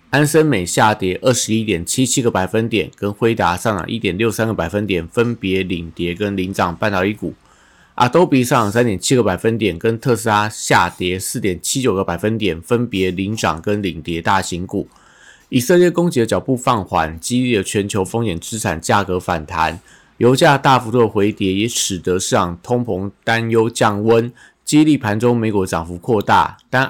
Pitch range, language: 95-120 Hz, Chinese